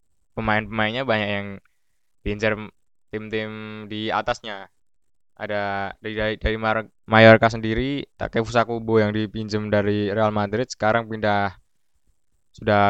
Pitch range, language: 105-115 Hz, Indonesian